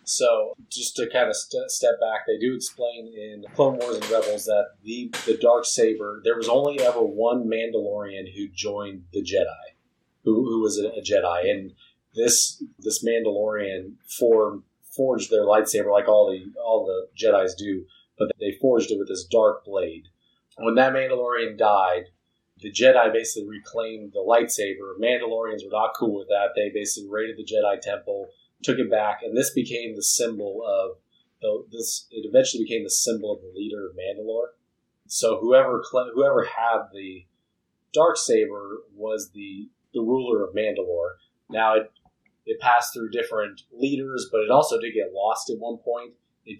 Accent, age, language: American, 30-49, English